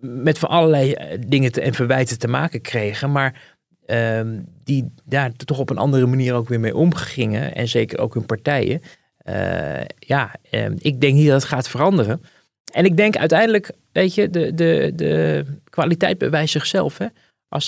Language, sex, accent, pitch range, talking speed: Dutch, male, Dutch, 120-160 Hz, 175 wpm